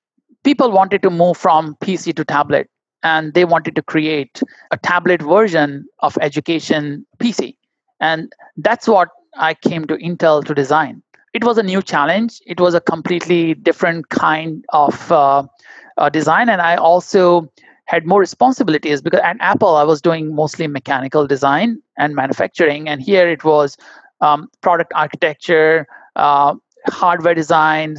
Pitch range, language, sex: 155-200 Hz, Thai, male